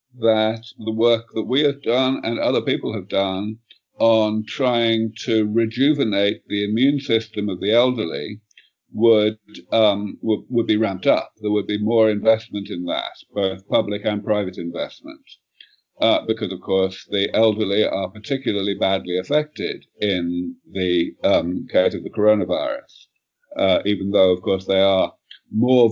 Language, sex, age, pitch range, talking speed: English, male, 50-69, 100-115 Hz, 155 wpm